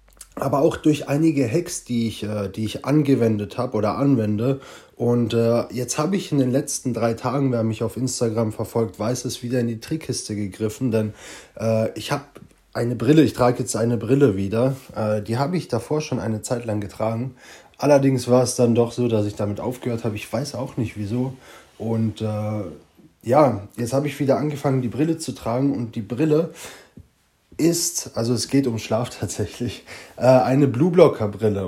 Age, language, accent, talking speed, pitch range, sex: 20-39, German, German, 185 wpm, 110-135 Hz, male